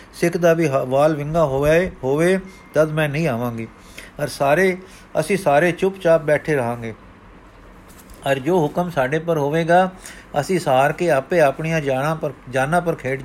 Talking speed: 155 wpm